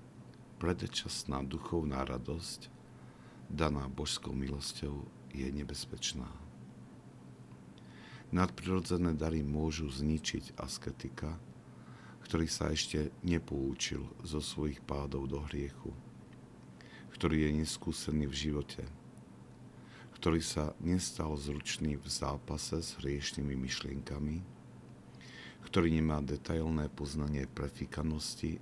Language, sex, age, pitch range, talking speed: Slovak, male, 50-69, 65-80 Hz, 85 wpm